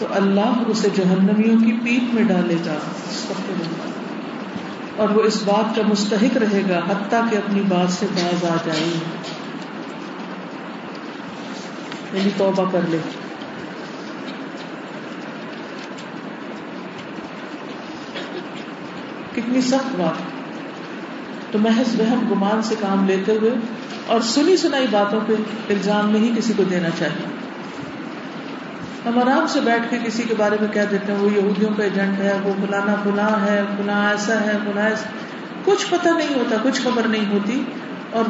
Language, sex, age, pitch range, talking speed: Urdu, female, 50-69, 200-255 Hz, 135 wpm